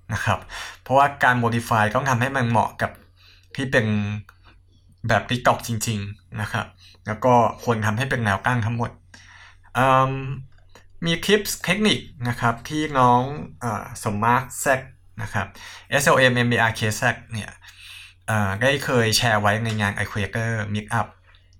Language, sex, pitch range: English, male, 100-125 Hz